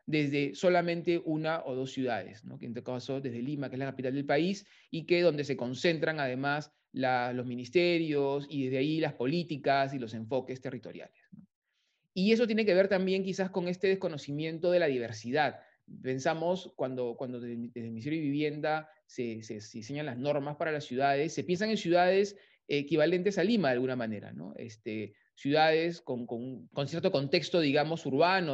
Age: 30-49